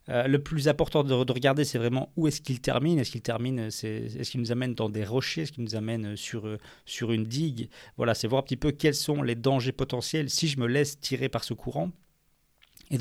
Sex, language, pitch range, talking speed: male, French, 115-140 Hz, 230 wpm